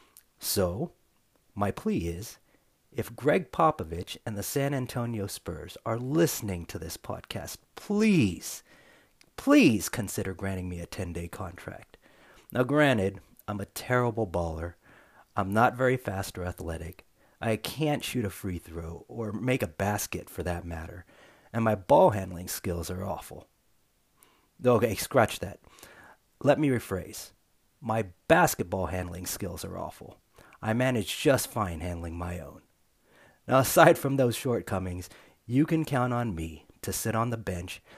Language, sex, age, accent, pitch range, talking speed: English, male, 40-59, American, 90-125 Hz, 145 wpm